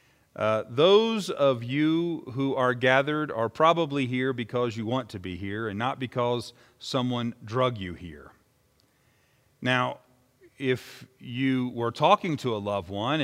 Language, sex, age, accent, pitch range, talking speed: English, male, 40-59, American, 115-160 Hz, 145 wpm